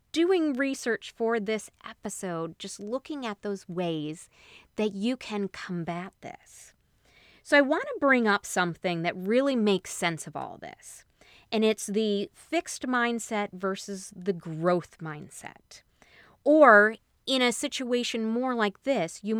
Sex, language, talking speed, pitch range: female, English, 140 wpm, 185-240 Hz